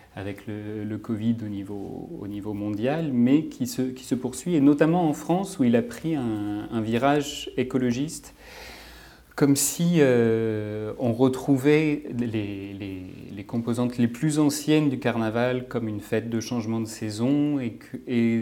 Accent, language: French, French